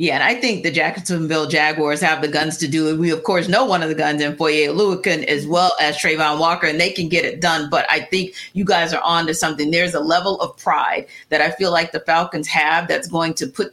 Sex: female